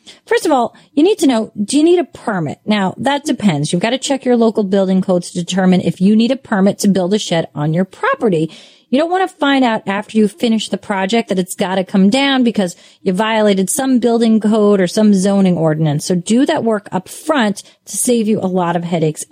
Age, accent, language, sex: 30-49, American, English, female